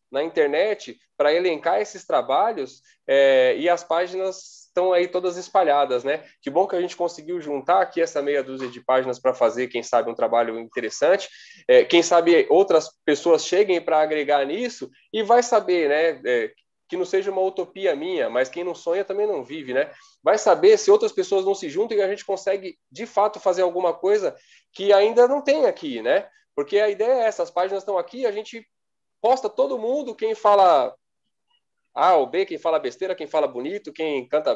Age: 20-39